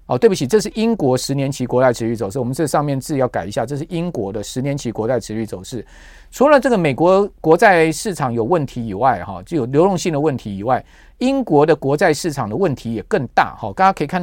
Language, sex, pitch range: Chinese, male, 125-180 Hz